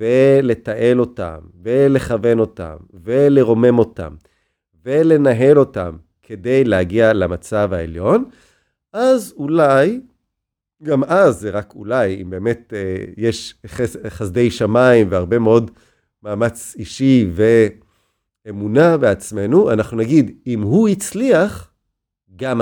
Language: Hebrew